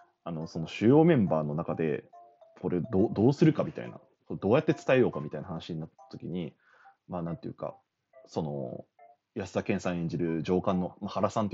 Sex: male